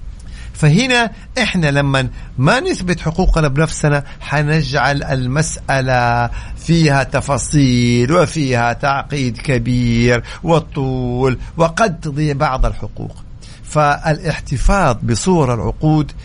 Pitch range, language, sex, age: 130-160 Hz, Arabic, male, 50-69